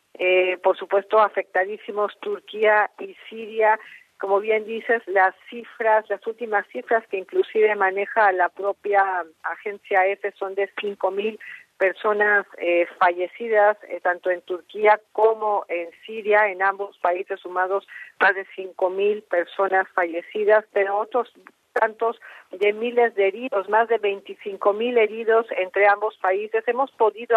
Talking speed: 135 wpm